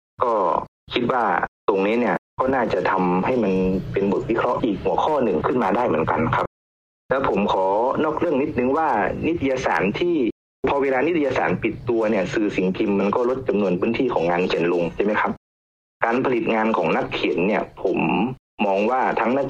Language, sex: Thai, male